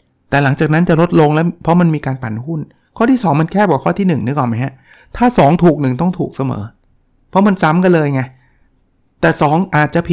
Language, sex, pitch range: Thai, male, 130-170 Hz